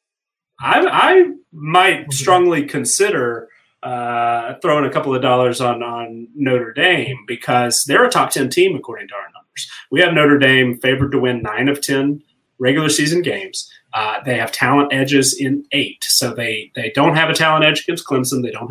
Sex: male